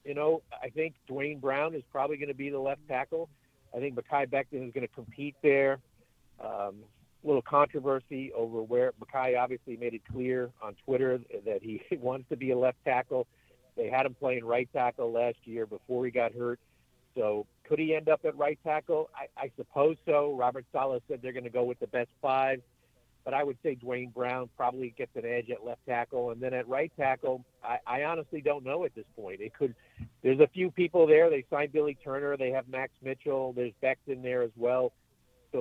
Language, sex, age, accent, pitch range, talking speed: English, male, 50-69, American, 125-145 Hz, 210 wpm